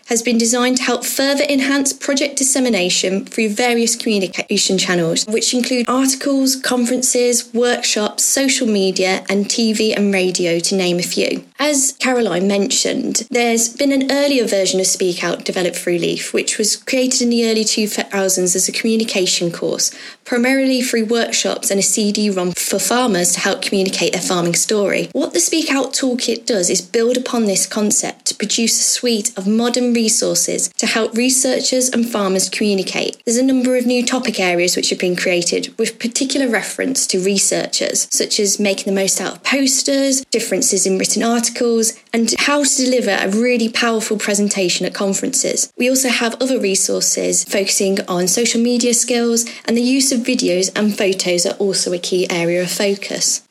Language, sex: English, female